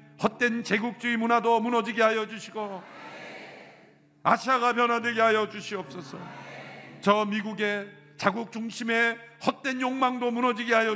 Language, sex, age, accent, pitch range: Korean, male, 50-69, native, 170-230 Hz